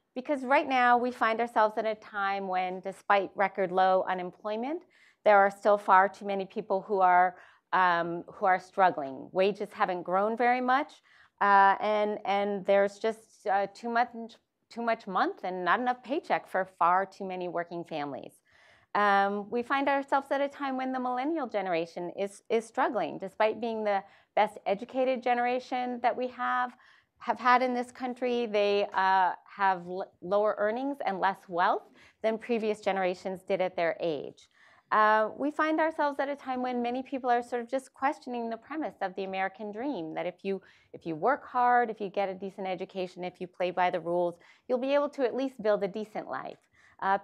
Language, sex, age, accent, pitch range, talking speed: English, female, 40-59, American, 190-245 Hz, 190 wpm